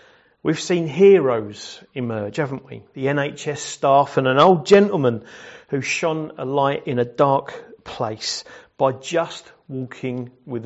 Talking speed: 140 wpm